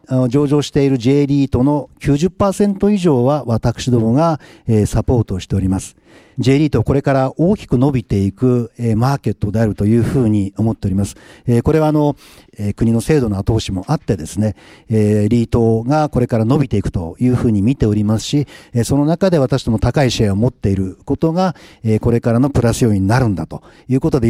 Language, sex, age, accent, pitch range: Japanese, male, 50-69, native, 110-150 Hz